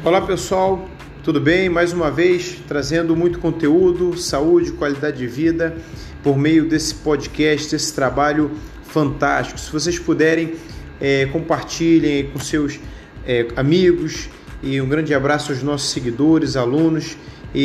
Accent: Brazilian